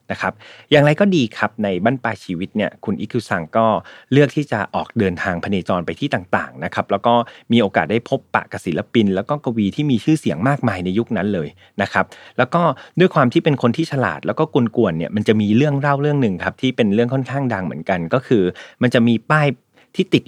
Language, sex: Thai, male